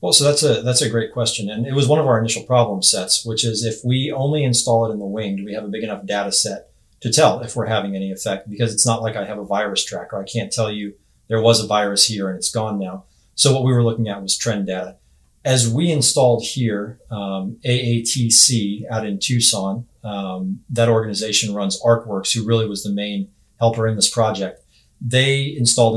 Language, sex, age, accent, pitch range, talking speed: English, male, 30-49, American, 100-120 Hz, 225 wpm